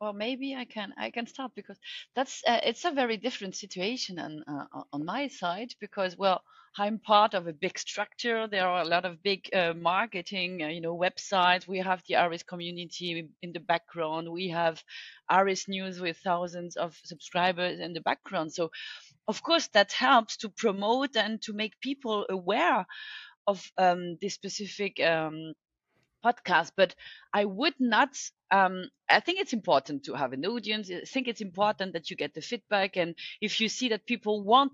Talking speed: 185 wpm